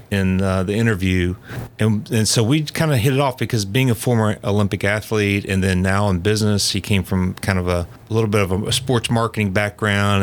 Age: 40-59